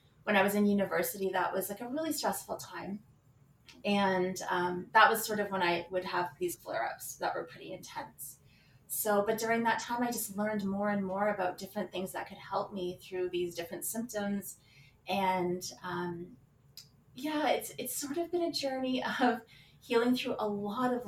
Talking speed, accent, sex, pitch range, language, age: 190 wpm, American, female, 175-205 Hz, English, 30-49